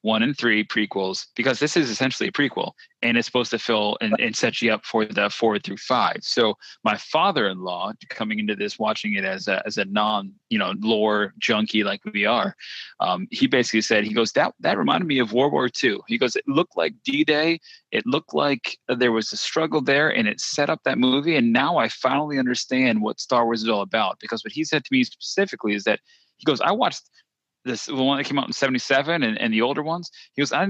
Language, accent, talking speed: English, American, 230 wpm